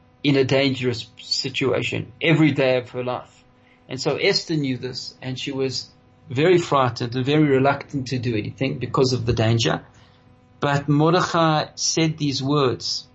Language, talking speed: English, 155 wpm